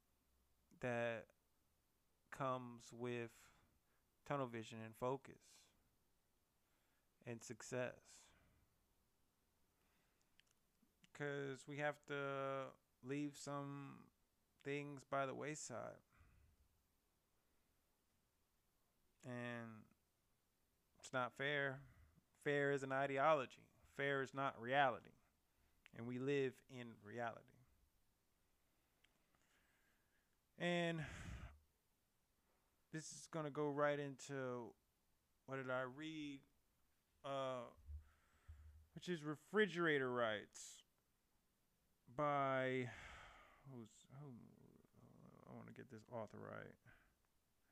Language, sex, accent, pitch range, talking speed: English, male, American, 100-140 Hz, 80 wpm